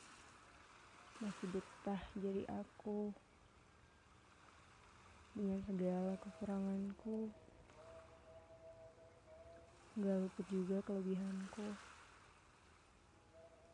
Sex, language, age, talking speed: female, Indonesian, 20-39, 50 wpm